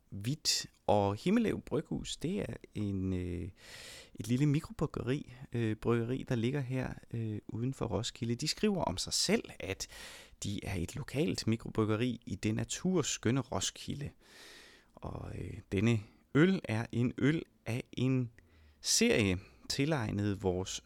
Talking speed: 135 wpm